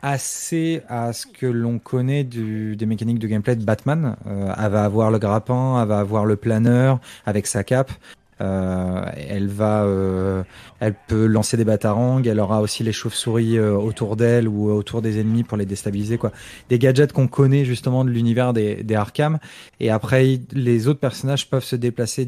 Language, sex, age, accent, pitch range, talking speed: French, male, 20-39, French, 110-135 Hz, 190 wpm